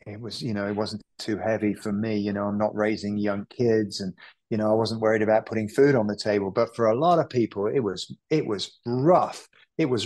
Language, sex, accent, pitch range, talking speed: English, male, British, 110-155 Hz, 250 wpm